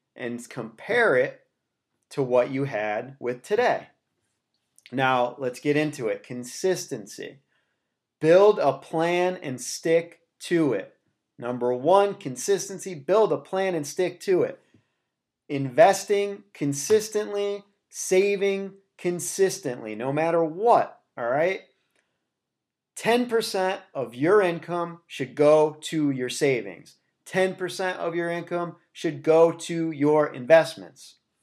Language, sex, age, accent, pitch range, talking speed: English, male, 30-49, American, 140-190 Hz, 115 wpm